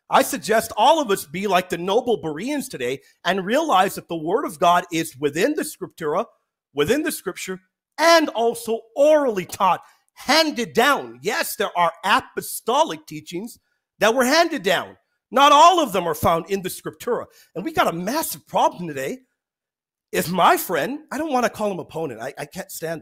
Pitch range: 175-245 Hz